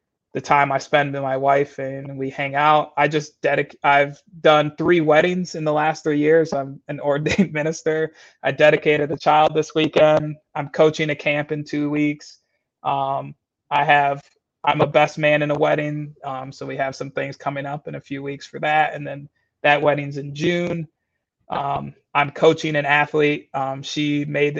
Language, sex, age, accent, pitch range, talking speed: English, male, 20-39, American, 140-155 Hz, 190 wpm